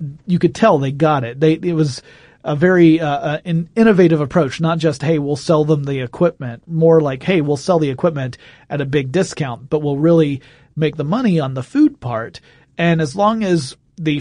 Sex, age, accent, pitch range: male, 30-49, American, 135-165 Hz